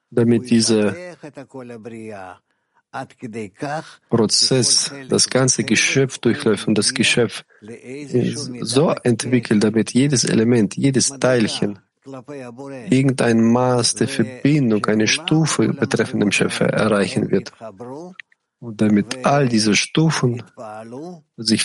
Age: 50-69